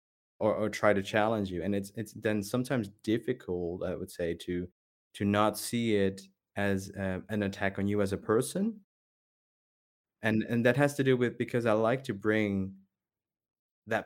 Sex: male